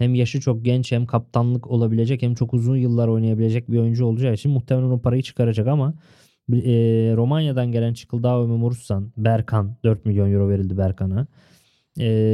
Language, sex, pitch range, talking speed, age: Turkish, male, 110-125 Hz, 165 wpm, 20-39